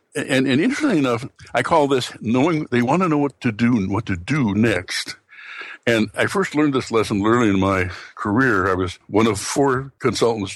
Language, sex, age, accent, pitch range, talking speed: English, male, 60-79, American, 95-120 Hz, 210 wpm